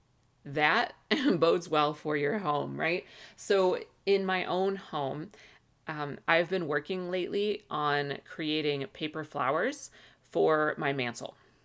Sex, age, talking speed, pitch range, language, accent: female, 30-49, 125 wpm, 140-175 Hz, English, American